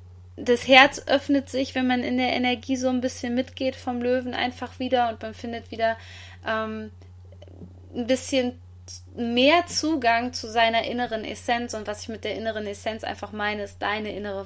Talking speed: 175 wpm